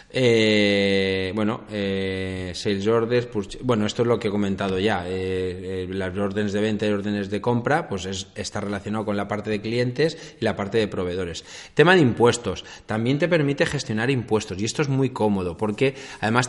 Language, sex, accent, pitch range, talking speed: Spanish, male, Spanish, 100-130 Hz, 195 wpm